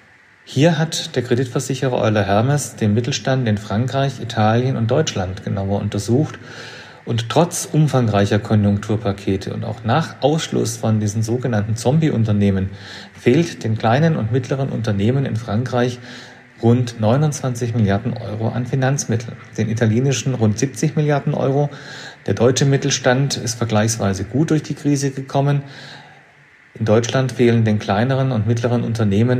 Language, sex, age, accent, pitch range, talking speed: German, male, 40-59, German, 105-130 Hz, 135 wpm